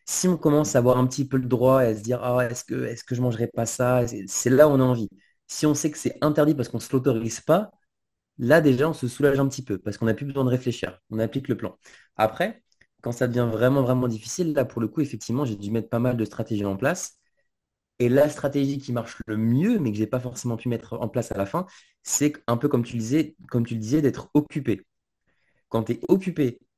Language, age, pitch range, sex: French, 20-39, 110-140 Hz, male